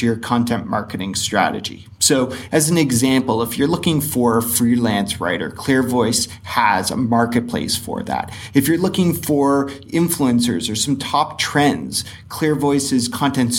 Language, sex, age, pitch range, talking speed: English, male, 30-49, 115-130 Hz, 140 wpm